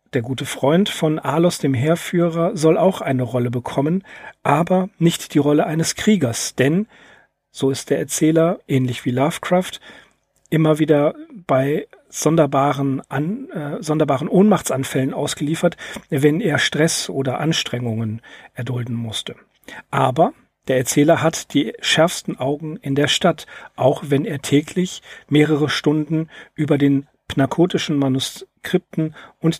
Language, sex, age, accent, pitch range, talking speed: German, male, 40-59, German, 135-170 Hz, 125 wpm